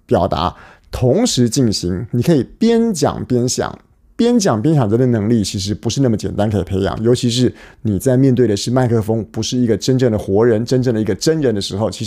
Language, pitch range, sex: Chinese, 100-135 Hz, male